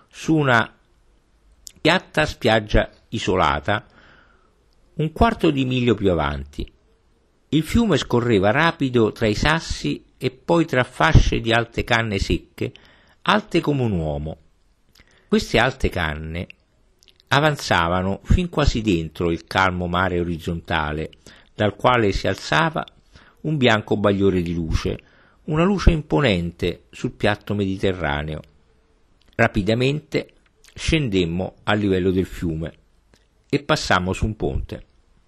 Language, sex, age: Italian, male, 50-69